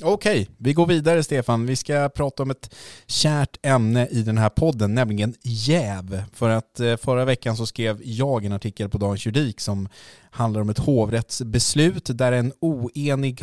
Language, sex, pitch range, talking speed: Swedish, male, 100-130 Hz, 175 wpm